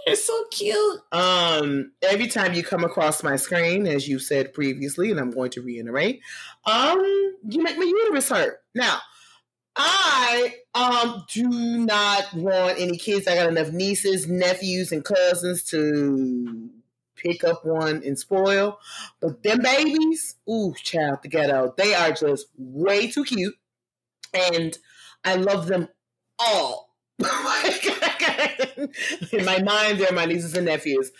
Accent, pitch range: American, 165-220 Hz